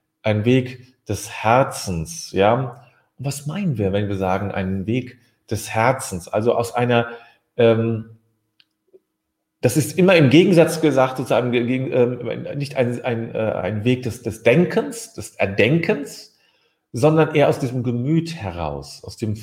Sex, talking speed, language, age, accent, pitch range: male, 135 wpm, German, 40-59, German, 105-140 Hz